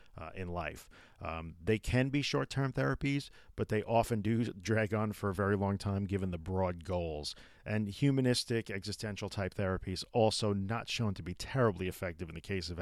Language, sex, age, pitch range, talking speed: English, male, 40-59, 90-115 Hz, 185 wpm